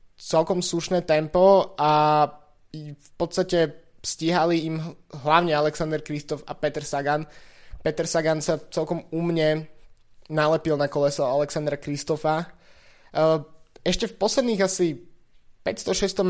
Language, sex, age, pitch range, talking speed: Slovak, male, 20-39, 145-165 Hz, 105 wpm